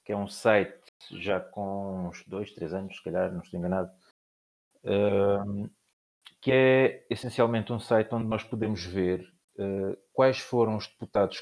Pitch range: 95-120 Hz